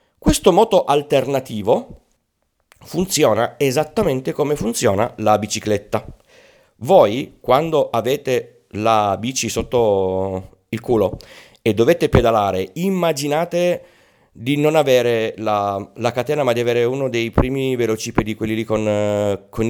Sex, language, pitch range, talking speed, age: male, Italian, 105-135 Hz, 115 wpm, 40-59